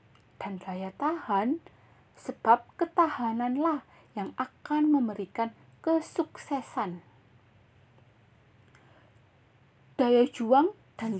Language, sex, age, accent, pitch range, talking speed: Indonesian, female, 20-39, native, 190-280 Hz, 65 wpm